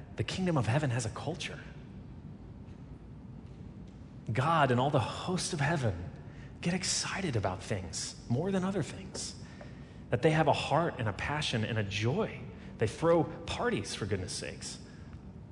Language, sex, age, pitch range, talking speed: English, male, 30-49, 110-135 Hz, 150 wpm